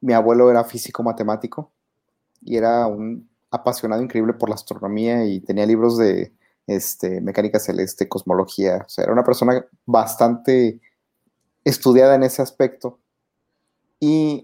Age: 30-49